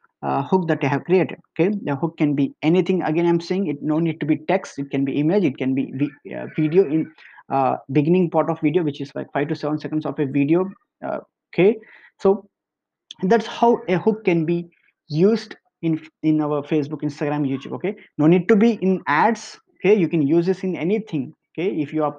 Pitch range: 155-200 Hz